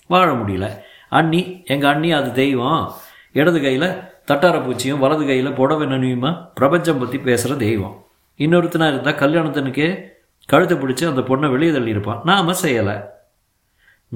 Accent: native